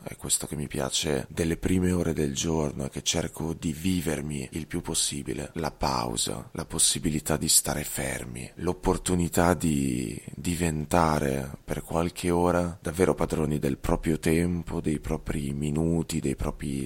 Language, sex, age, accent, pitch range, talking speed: Italian, male, 30-49, native, 70-85 Hz, 145 wpm